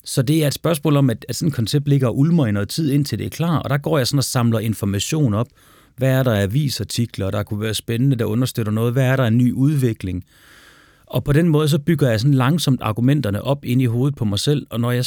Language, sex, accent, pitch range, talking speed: Danish, male, native, 110-140 Hz, 260 wpm